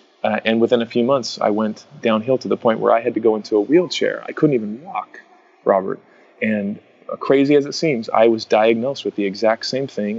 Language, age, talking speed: English, 30-49, 230 wpm